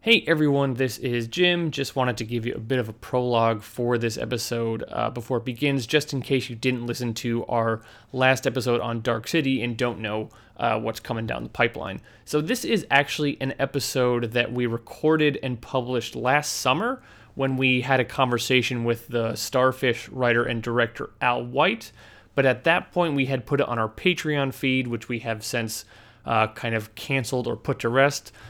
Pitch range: 115-135 Hz